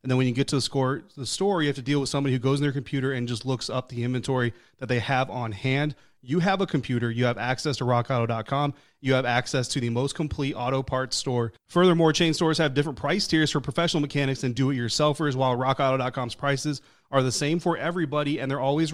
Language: English